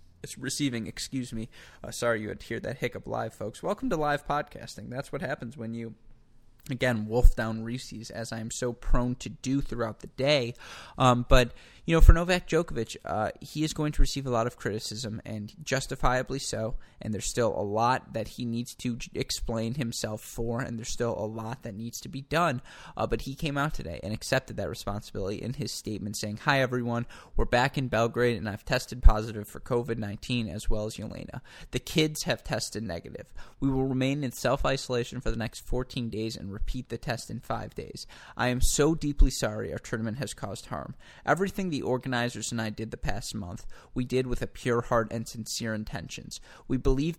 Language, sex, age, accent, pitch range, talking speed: English, male, 20-39, American, 110-130 Hz, 205 wpm